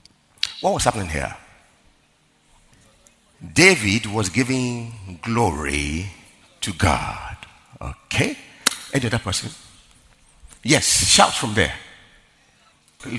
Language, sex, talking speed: English, male, 80 wpm